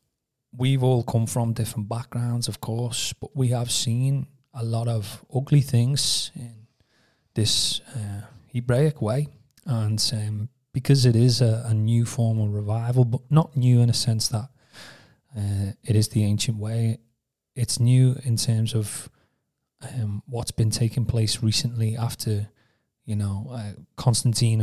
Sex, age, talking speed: male, 30-49, 150 wpm